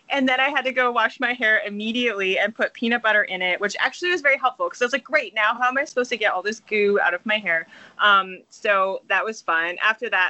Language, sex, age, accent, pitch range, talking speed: English, female, 20-39, American, 180-225 Hz, 275 wpm